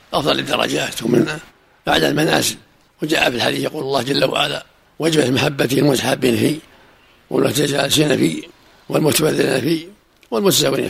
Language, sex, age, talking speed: Arabic, male, 60-79, 115 wpm